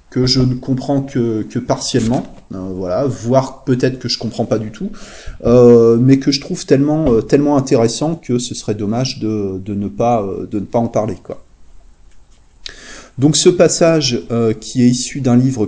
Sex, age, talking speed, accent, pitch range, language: male, 20-39, 195 wpm, French, 110-135 Hz, French